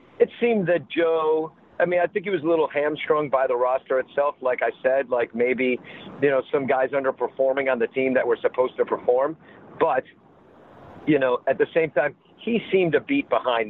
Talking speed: 205 wpm